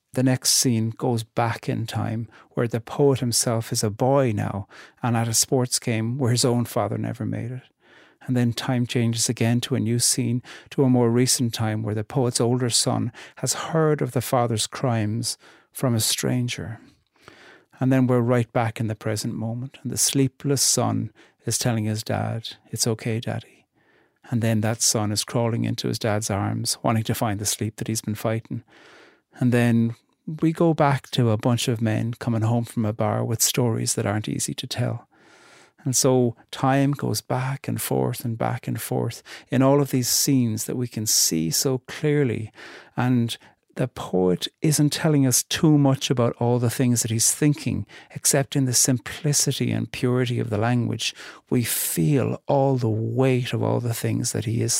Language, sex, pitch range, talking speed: English, male, 115-130 Hz, 190 wpm